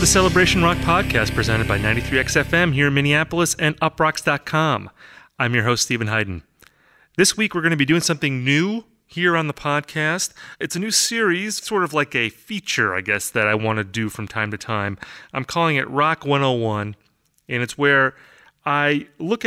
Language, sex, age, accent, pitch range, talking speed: English, male, 30-49, American, 120-165 Hz, 185 wpm